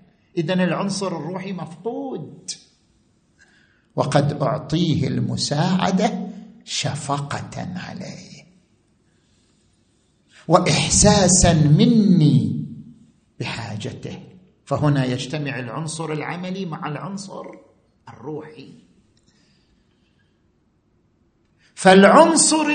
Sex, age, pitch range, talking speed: male, 50-69, 160-215 Hz, 55 wpm